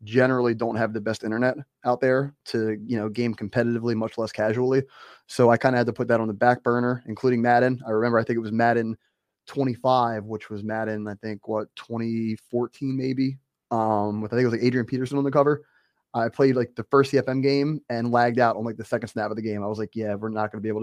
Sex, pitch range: male, 110-130 Hz